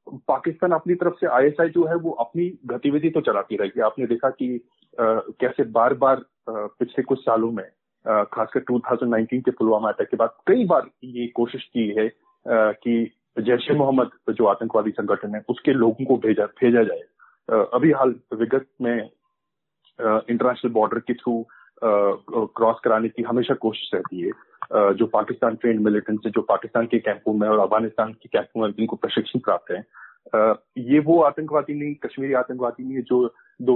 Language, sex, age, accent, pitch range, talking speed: Hindi, male, 30-49, native, 115-145 Hz, 165 wpm